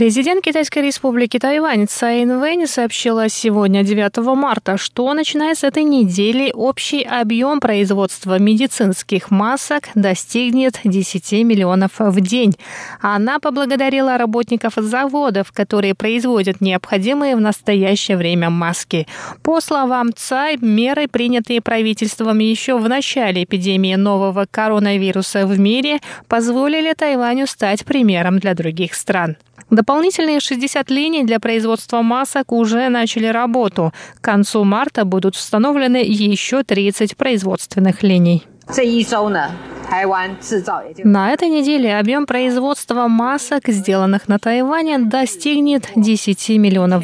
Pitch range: 200-260 Hz